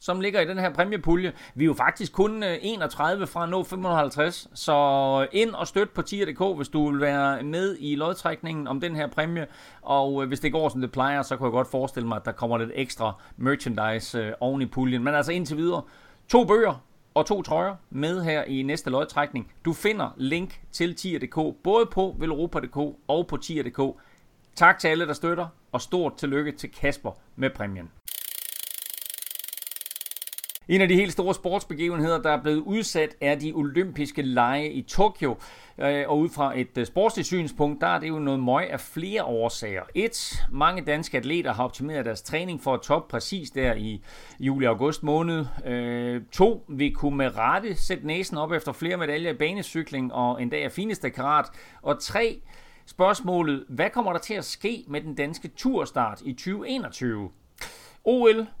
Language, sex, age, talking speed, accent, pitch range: Danish, male, 30-49, 180 wpm, native, 135-175 Hz